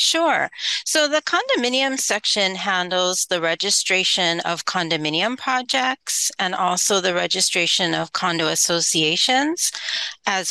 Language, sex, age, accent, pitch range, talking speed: English, female, 40-59, American, 165-220 Hz, 110 wpm